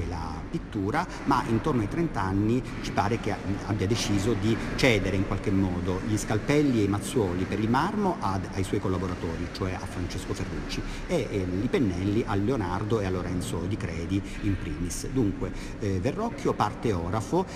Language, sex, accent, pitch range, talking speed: Italian, male, native, 95-125 Hz, 170 wpm